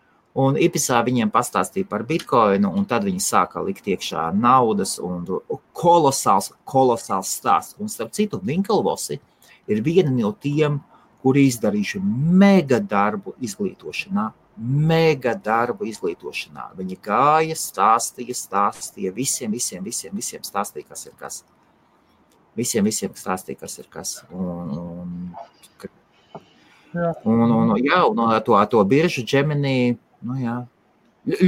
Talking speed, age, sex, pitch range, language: 120 wpm, 30-49, male, 115-180 Hz, English